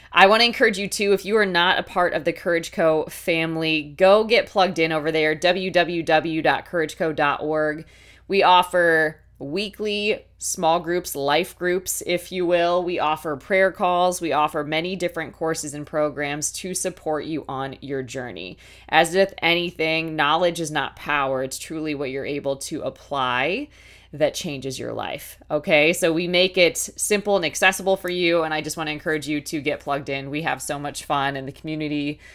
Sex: female